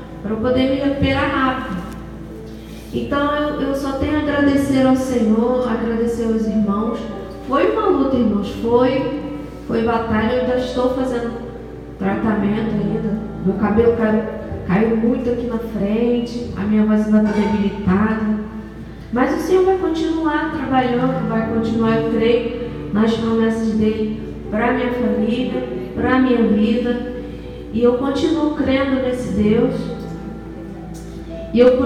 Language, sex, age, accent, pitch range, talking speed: Portuguese, female, 20-39, Brazilian, 215-255 Hz, 140 wpm